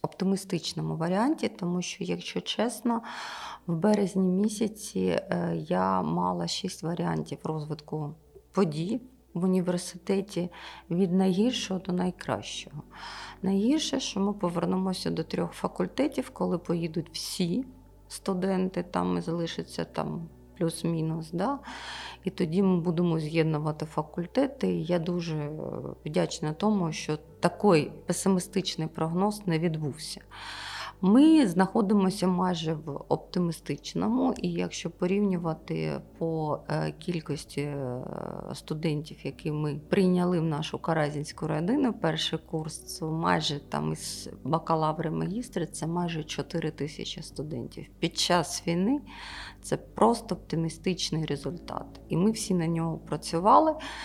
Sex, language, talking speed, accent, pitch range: female, Ukrainian, 105 wpm, native, 155-190 Hz